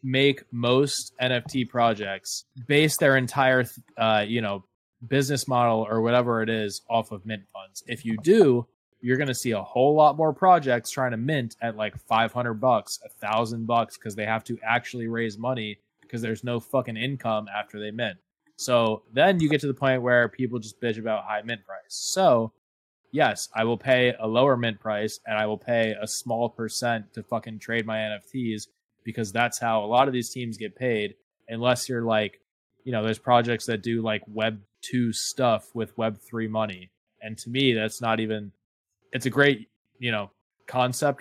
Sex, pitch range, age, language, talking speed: male, 110-125 Hz, 20-39, English, 190 wpm